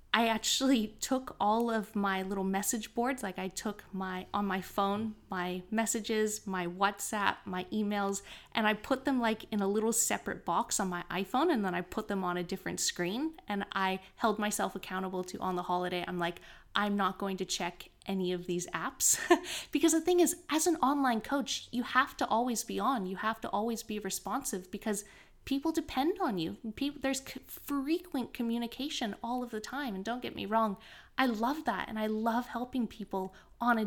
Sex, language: female, English